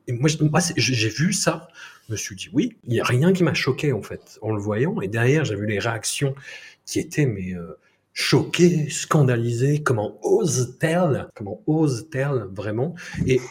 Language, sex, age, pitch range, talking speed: French, male, 40-59, 110-160 Hz, 180 wpm